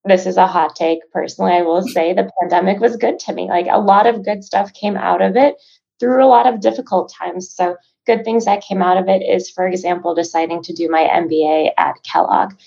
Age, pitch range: 20-39, 175-240 Hz